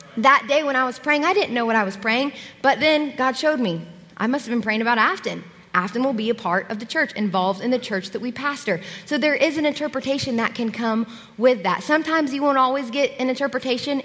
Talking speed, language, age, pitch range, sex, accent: 245 wpm, English, 20-39, 220-295 Hz, female, American